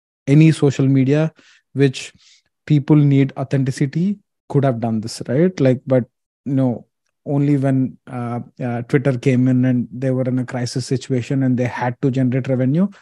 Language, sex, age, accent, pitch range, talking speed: English, male, 20-39, Indian, 125-145 Hz, 160 wpm